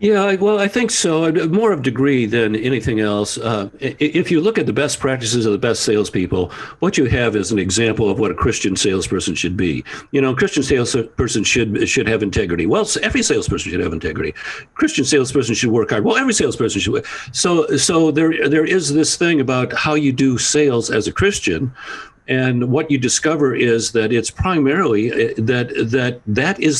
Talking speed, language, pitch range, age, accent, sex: 195 wpm, English, 110-145 Hz, 60-79, American, male